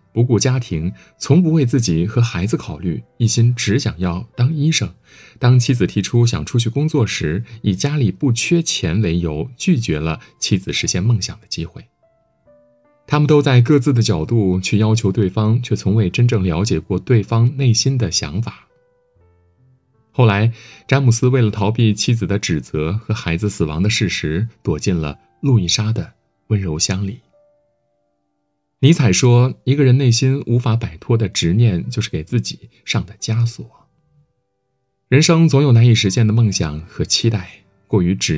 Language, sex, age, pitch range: Chinese, male, 50-69, 100-130 Hz